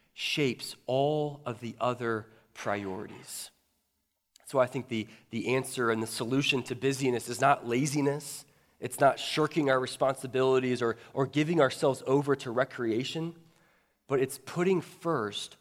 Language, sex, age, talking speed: English, male, 20-39, 140 wpm